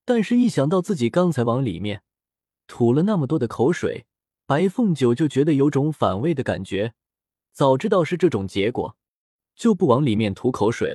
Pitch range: 110-170 Hz